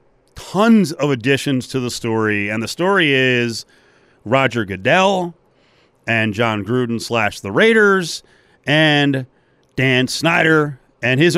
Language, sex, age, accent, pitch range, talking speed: English, male, 40-59, American, 115-155 Hz, 120 wpm